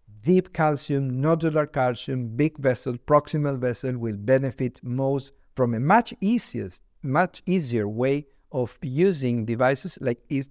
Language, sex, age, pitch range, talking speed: English, male, 50-69, 120-155 Hz, 125 wpm